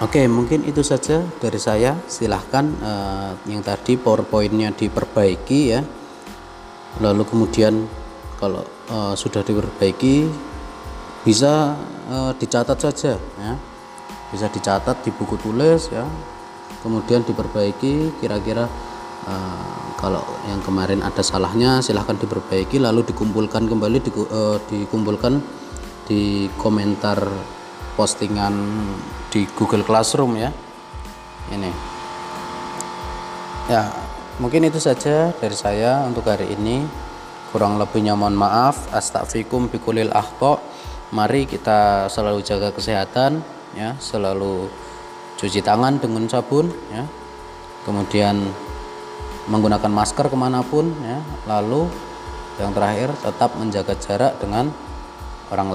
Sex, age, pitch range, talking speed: male, 30-49, 95-120 Hz, 105 wpm